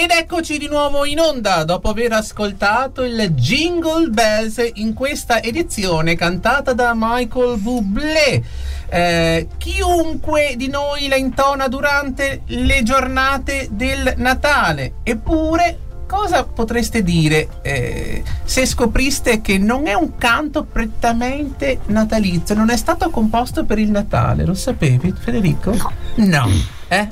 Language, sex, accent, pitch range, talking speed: Italian, male, native, 160-260 Hz, 125 wpm